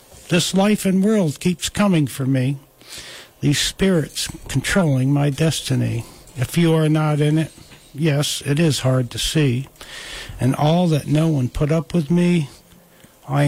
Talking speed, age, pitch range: 155 wpm, 60-79, 130-155 Hz